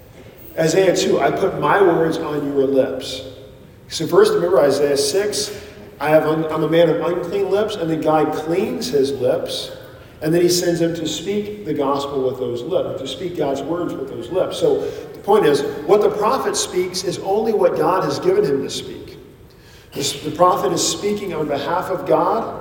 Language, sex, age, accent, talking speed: English, male, 50-69, American, 195 wpm